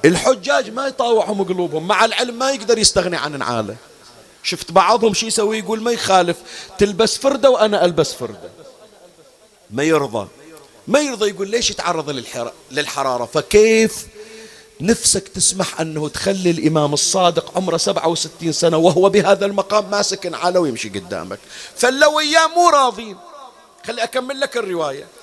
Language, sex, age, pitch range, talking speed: Arabic, male, 40-59, 160-215 Hz, 130 wpm